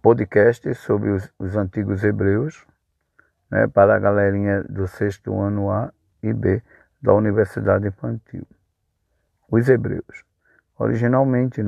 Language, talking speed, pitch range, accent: Portuguese, 115 wpm, 100-120 Hz, Brazilian